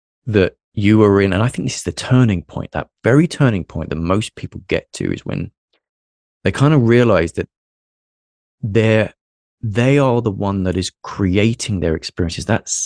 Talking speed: 180 wpm